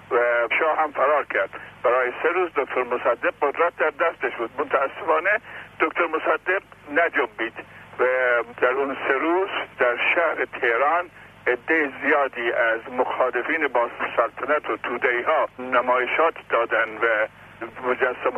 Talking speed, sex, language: 130 wpm, male, Persian